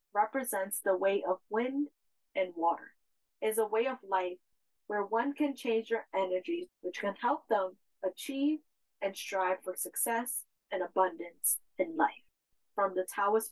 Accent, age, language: American, 30-49, English